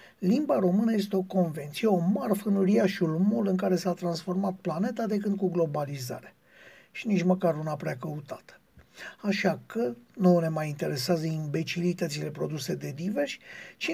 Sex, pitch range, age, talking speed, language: male, 170-205 Hz, 50-69, 150 wpm, Romanian